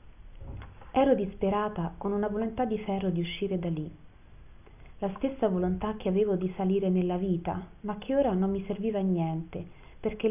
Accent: native